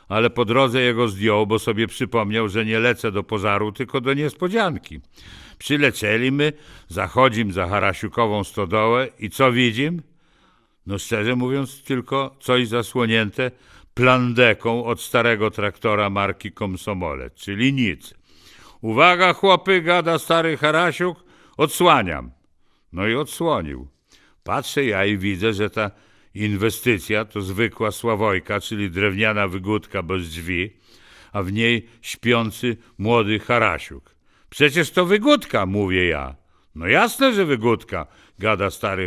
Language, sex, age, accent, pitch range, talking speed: English, male, 60-79, Polish, 100-135 Hz, 125 wpm